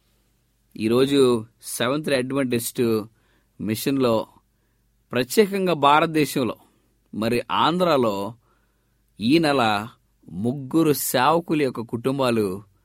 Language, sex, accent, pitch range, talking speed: English, male, Indian, 110-160 Hz, 70 wpm